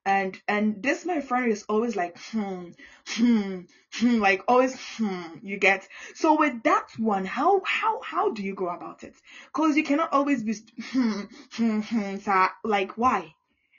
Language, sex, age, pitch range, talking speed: Italian, female, 10-29, 190-260 Hz, 165 wpm